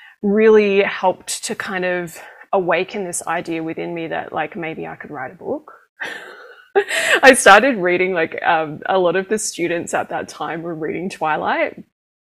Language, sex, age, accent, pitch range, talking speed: English, female, 20-39, Australian, 175-255 Hz, 165 wpm